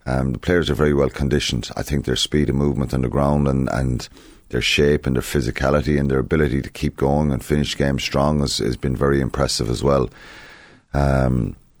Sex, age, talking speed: male, 30-49, 210 wpm